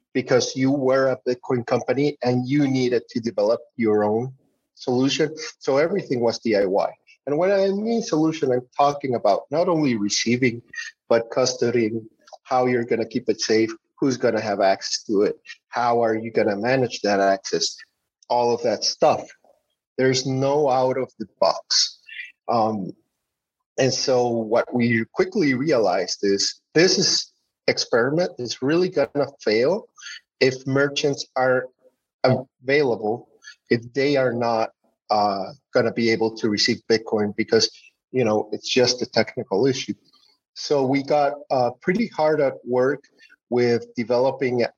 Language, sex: English, male